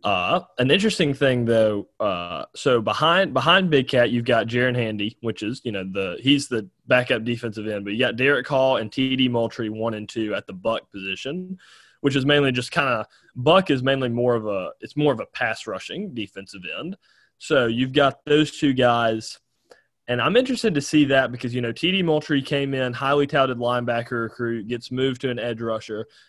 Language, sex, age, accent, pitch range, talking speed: English, male, 20-39, American, 115-140 Hz, 205 wpm